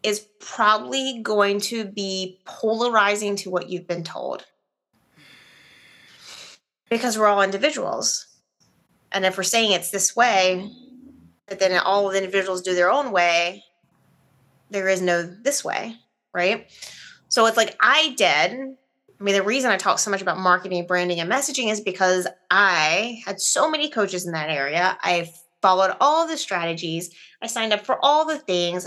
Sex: female